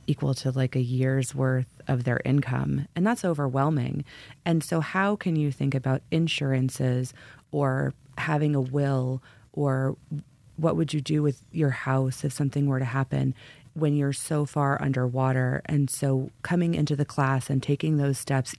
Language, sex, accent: English, female, American